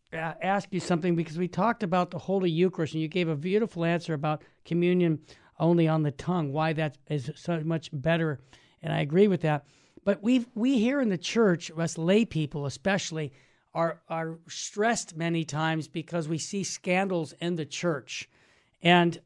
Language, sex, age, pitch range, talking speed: English, male, 50-69, 165-195 Hz, 180 wpm